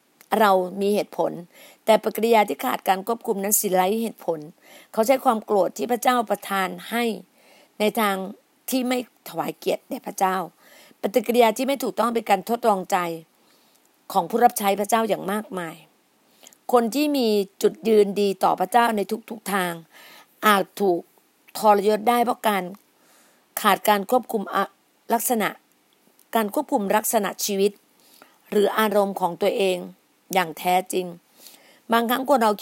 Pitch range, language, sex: 190-235 Hz, Thai, female